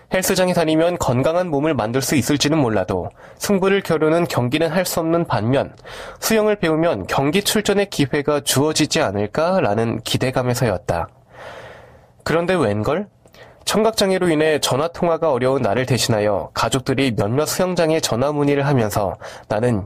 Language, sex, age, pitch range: Korean, male, 20-39, 125-175 Hz